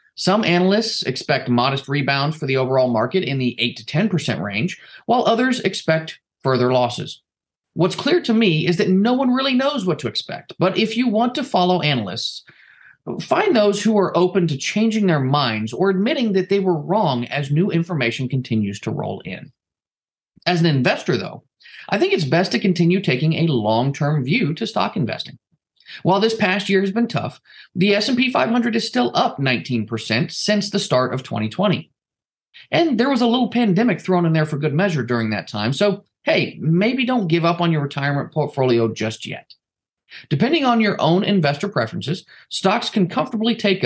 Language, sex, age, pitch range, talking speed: English, male, 30-49, 135-205 Hz, 185 wpm